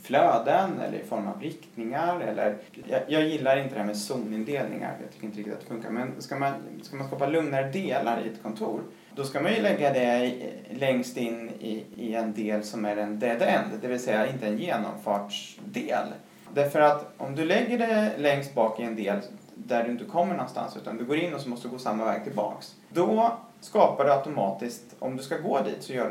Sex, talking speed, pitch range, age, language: male, 225 wpm, 115-165 Hz, 30-49, Swedish